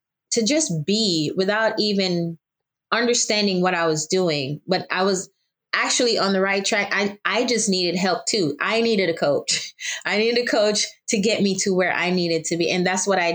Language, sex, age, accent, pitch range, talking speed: English, female, 20-39, American, 170-210 Hz, 200 wpm